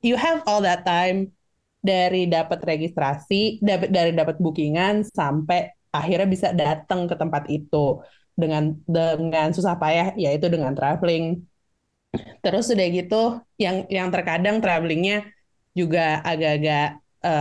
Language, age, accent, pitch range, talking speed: Indonesian, 20-39, native, 160-200 Hz, 120 wpm